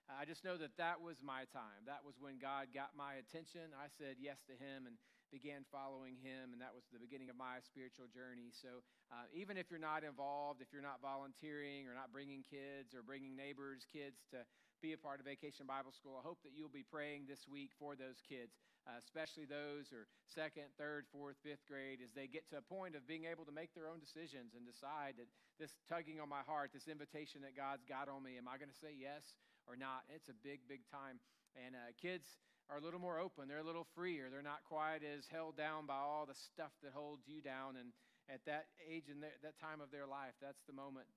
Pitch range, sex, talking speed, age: 130-150 Hz, male, 235 wpm, 40-59